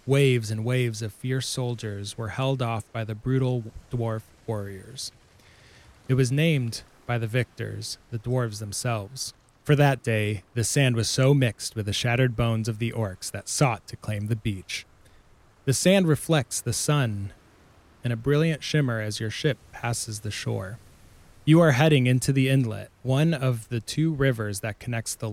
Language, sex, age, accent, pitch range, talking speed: English, male, 20-39, American, 110-135 Hz, 175 wpm